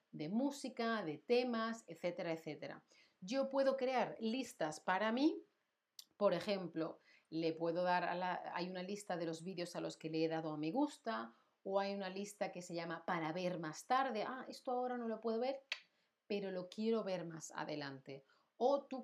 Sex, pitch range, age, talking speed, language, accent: female, 170-225 Hz, 40-59, 190 wpm, Spanish, Spanish